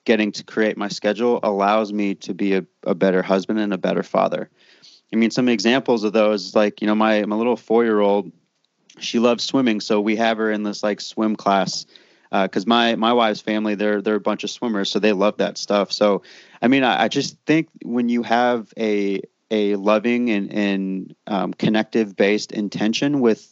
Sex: male